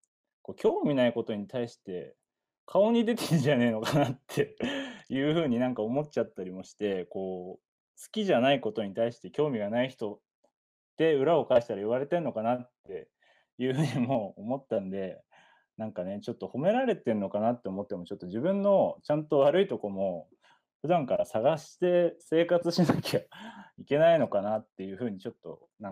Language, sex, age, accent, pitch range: Japanese, male, 20-39, native, 105-170 Hz